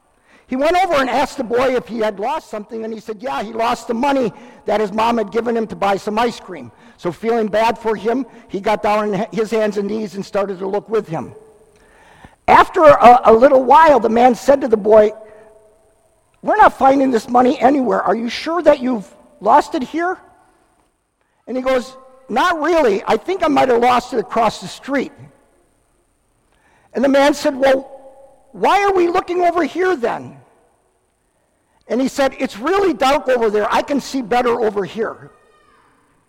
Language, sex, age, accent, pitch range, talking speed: English, male, 50-69, American, 220-270 Hz, 190 wpm